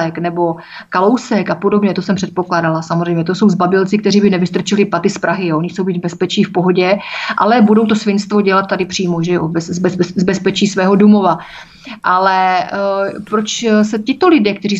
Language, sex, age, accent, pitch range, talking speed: Czech, female, 30-49, native, 185-210 Hz, 175 wpm